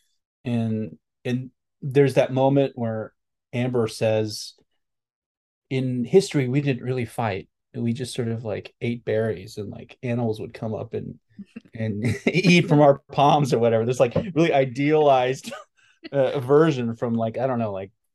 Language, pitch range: English, 110-135 Hz